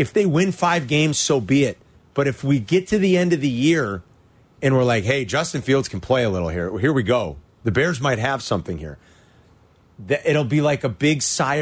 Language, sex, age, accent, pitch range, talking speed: English, male, 30-49, American, 120-150 Hz, 225 wpm